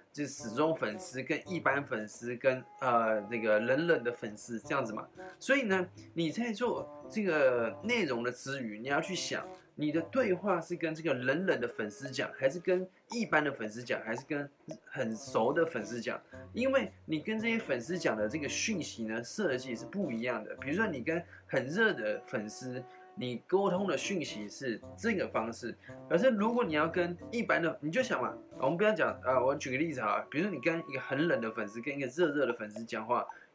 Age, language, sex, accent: 20-39, Chinese, male, native